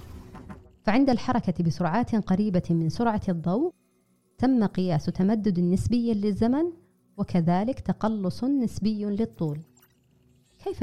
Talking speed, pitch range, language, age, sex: 95 wpm, 170-220 Hz, Arabic, 30-49, female